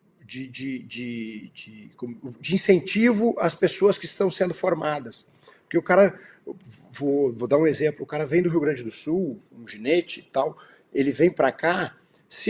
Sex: male